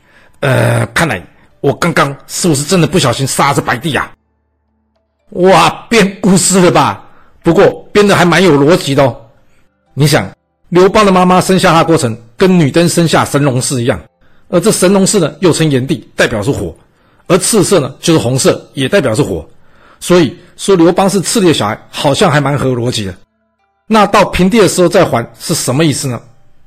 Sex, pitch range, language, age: male, 125-170 Hz, Chinese, 50-69